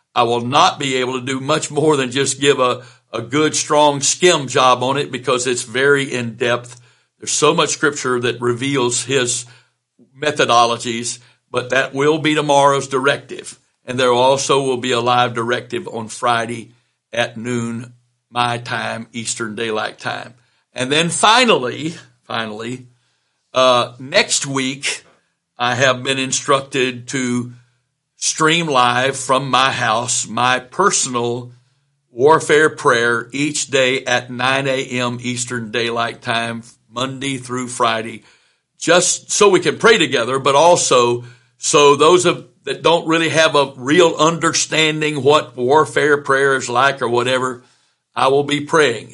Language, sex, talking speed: English, male, 140 wpm